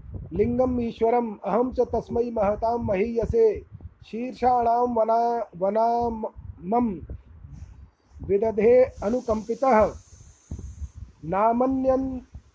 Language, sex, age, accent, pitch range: Hindi, male, 40-59, native, 210-255 Hz